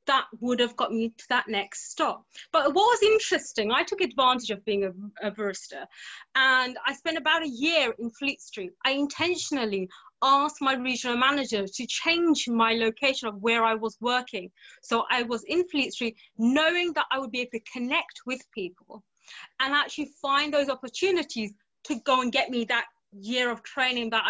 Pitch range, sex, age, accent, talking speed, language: 235-325 Hz, female, 20-39, British, 190 wpm, English